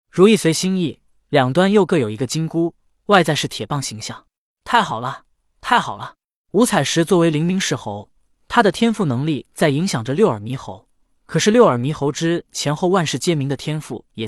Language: Chinese